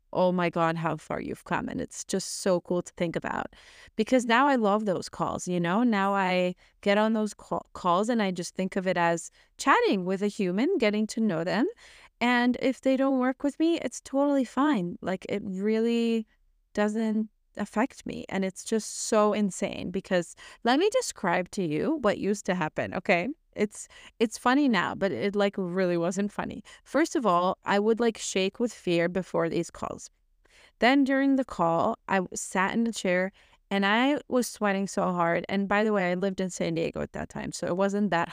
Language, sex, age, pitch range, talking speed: English, female, 30-49, 180-235 Hz, 200 wpm